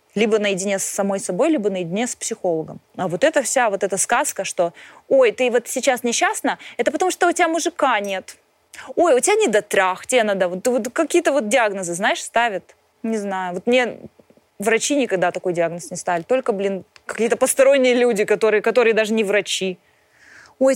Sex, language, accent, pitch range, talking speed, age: female, Russian, native, 195-260 Hz, 180 wpm, 20-39